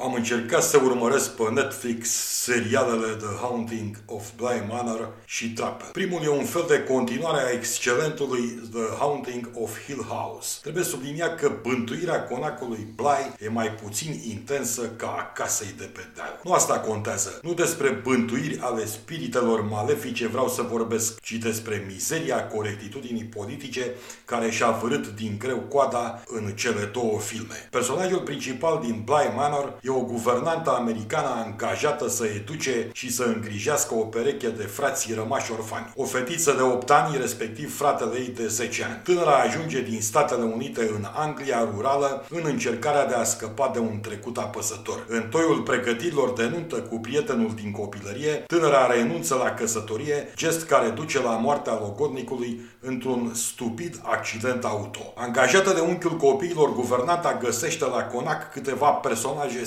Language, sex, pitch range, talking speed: Romanian, male, 115-135 Hz, 150 wpm